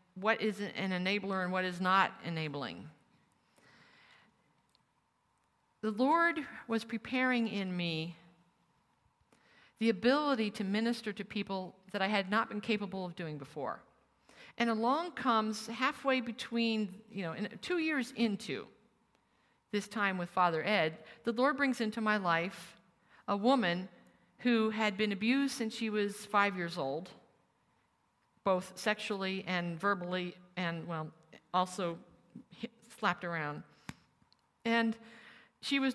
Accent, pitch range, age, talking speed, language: American, 180-230 Hz, 50-69, 125 wpm, English